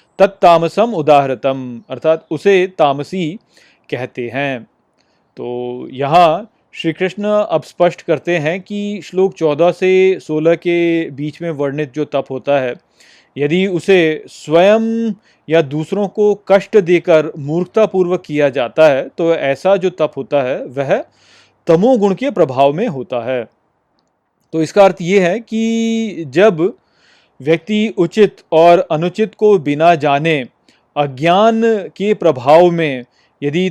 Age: 30-49